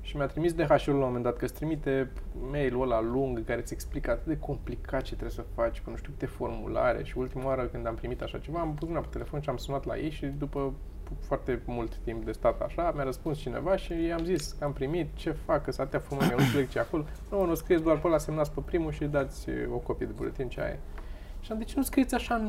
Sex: male